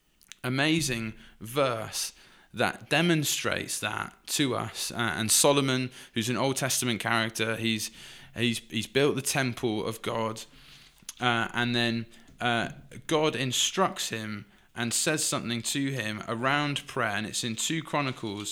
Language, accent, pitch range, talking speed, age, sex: English, British, 115-145 Hz, 135 wpm, 20-39, male